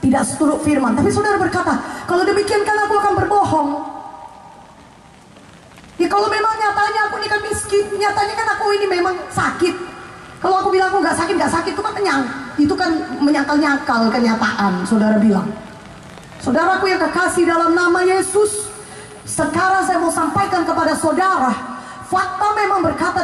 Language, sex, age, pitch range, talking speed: English, female, 20-39, 275-390 Hz, 150 wpm